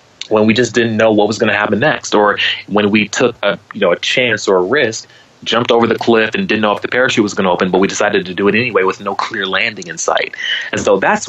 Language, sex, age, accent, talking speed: English, male, 30-49, American, 280 wpm